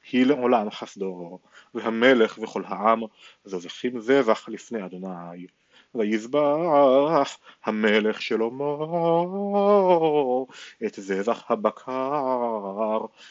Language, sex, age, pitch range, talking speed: Hebrew, male, 30-49, 110-140 Hz, 70 wpm